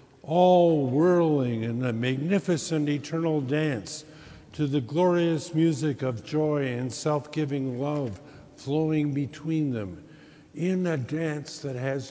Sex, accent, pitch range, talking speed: male, American, 125-155 Hz, 120 wpm